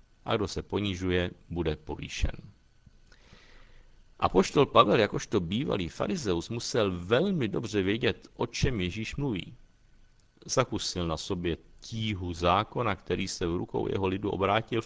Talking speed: 130 wpm